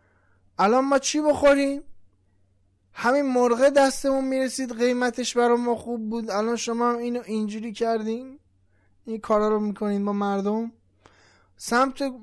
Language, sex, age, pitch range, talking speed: Persian, male, 20-39, 185-270 Hz, 130 wpm